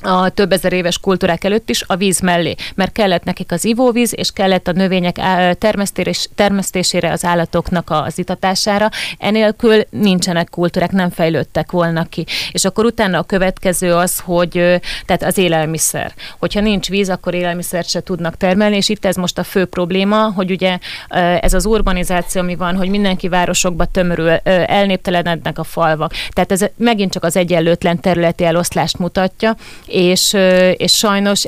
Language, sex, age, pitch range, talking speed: Hungarian, female, 30-49, 170-190 Hz, 155 wpm